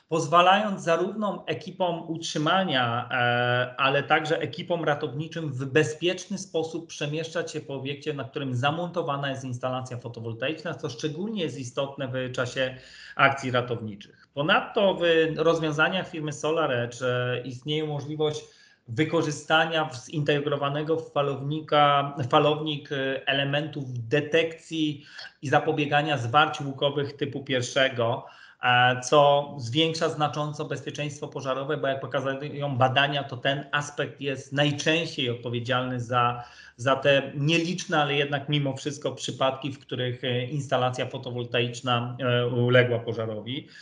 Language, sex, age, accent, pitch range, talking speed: Polish, male, 40-59, native, 130-155 Hz, 105 wpm